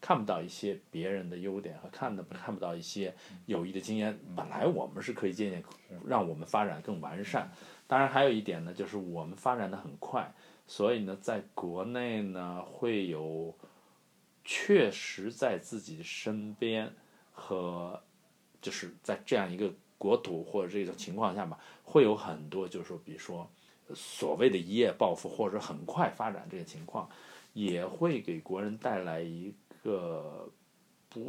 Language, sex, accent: Chinese, male, native